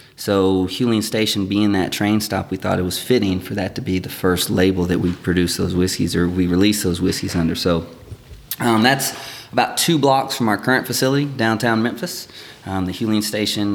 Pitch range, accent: 95-120 Hz, American